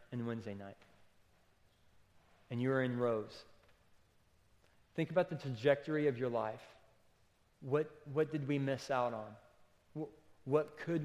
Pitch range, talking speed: 115-145 Hz, 125 wpm